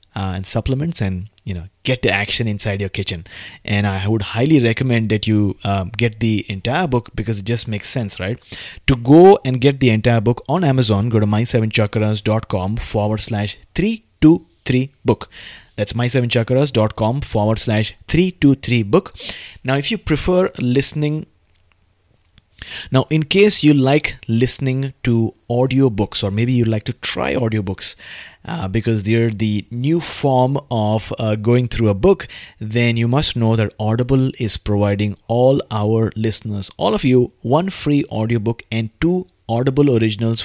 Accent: Indian